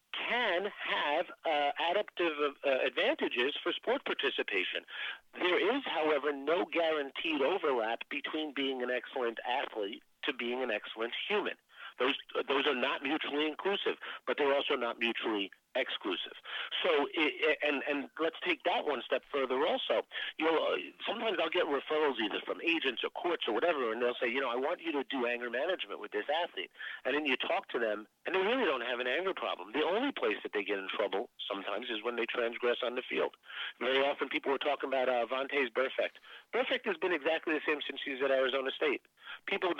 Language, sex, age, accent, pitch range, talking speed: English, male, 50-69, American, 135-210 Hz, 190 wpm